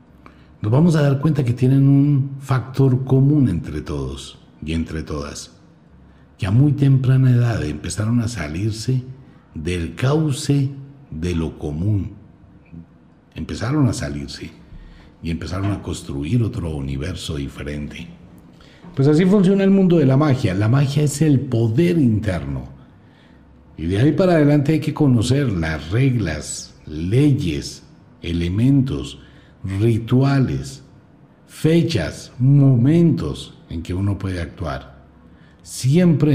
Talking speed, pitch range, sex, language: 120 wpm, 80-135 Hz, male, Spanish